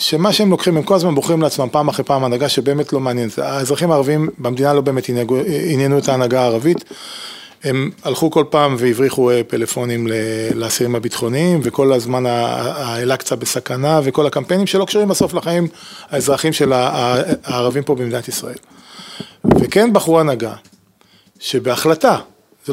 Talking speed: 140 wpm